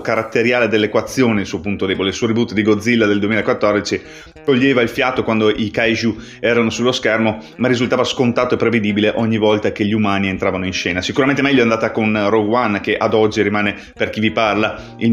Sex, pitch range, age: male, 105-120 Hz, 30-49